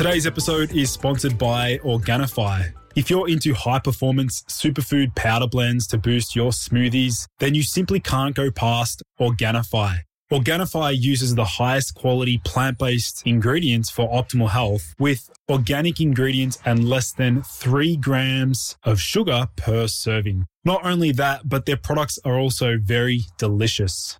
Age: 20-39